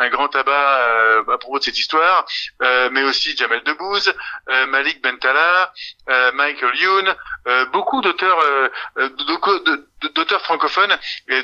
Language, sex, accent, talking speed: French, male, French, 155 wpm